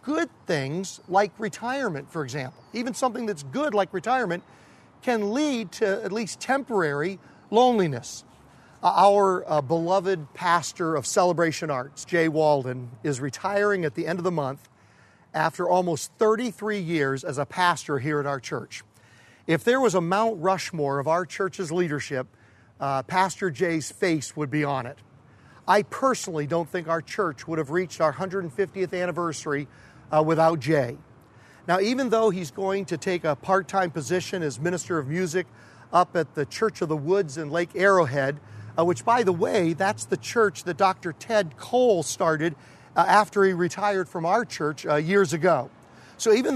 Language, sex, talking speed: English, male, 165 wpm